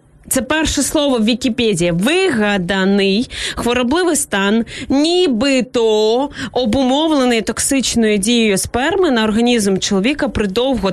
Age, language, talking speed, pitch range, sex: 20-39, Ukrainian, 95 wpm, 215-265 Hz, female